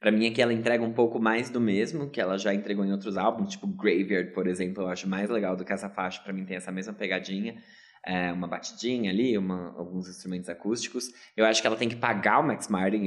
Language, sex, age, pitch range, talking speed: Portuguese, male, 20-39, 100-125 Hz, 240 wpm